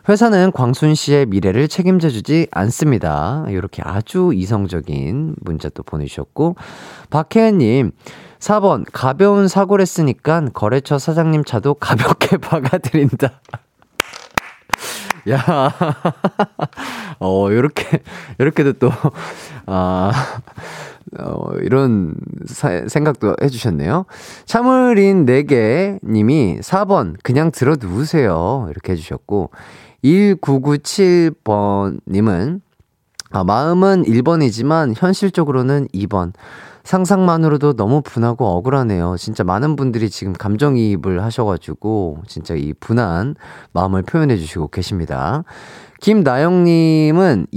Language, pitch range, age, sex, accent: Korean, 100-165 Hz, 30-49, male, native